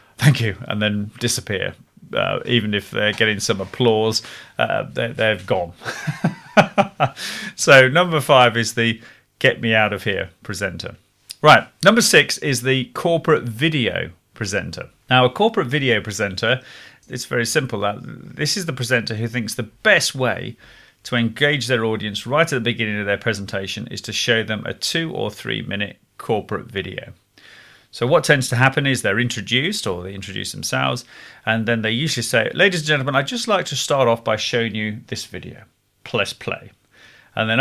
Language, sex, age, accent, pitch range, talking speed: English, male, 30-49, British, 110-135 Hz, 175 wpm